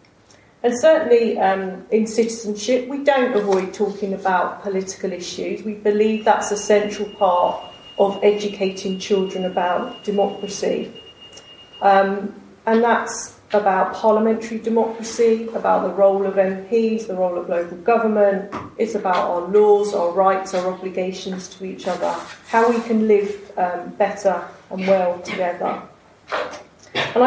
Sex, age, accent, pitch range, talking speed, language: female, 40-59, British, 195-230 Hz, 130 wpm, English